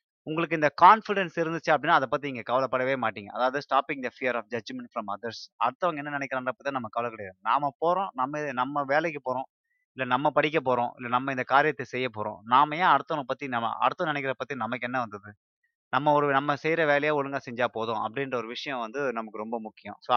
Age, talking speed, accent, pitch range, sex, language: 20-39, 195 wpm, native, 120-155 Hz, male, Tamil